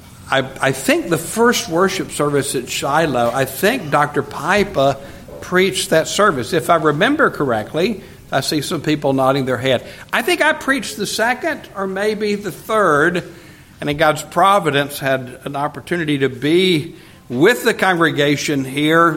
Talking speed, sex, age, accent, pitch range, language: 155 wpm, male, 60-79, American, 135-195 Hz, English